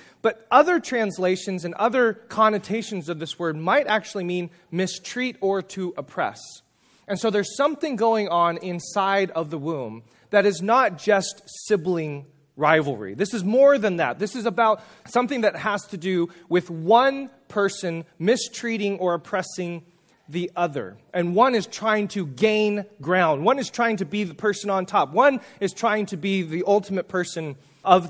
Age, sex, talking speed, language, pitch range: 30-49, male, 165 wpm, English, 170-220 Hz